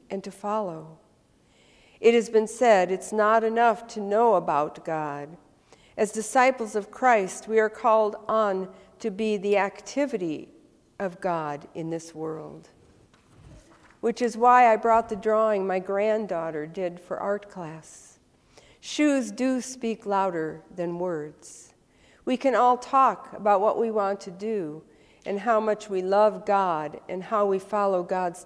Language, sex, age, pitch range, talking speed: English, female, 50-69, 185-230 Hz, 150 wpm